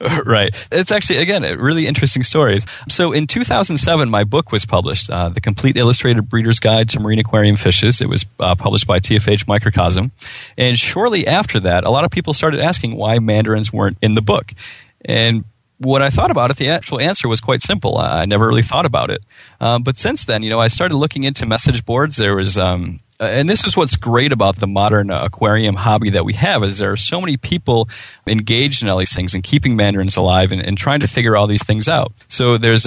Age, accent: 30-49, American